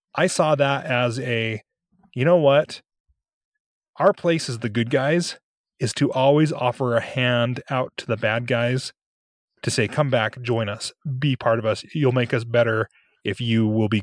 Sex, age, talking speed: male, 30-49, 185 wpm